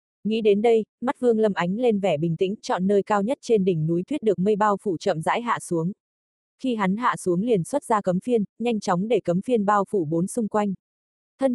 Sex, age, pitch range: female, 20-39, 185-225 Hz